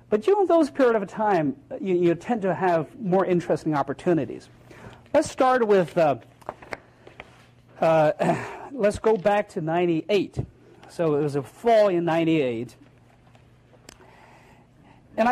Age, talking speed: 40-59, 125 wpm